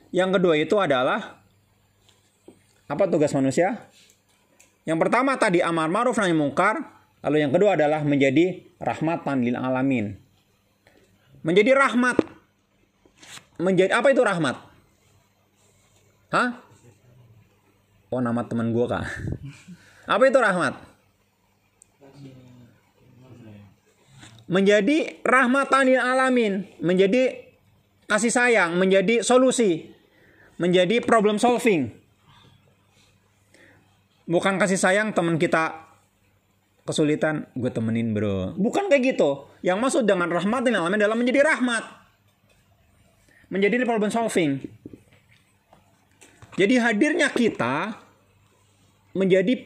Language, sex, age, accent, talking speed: Indonesian, male, 30-49, native, 90 wpm